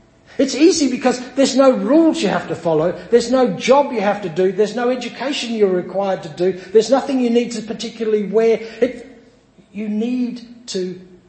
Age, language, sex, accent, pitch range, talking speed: 60-79, English, male, Australian, 140-210 Hz, 180 wpm